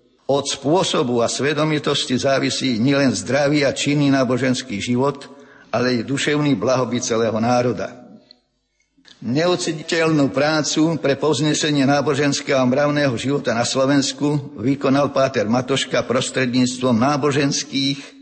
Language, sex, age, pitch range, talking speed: Slovak, male, 50-69, 130-145 Hz, 105 wpm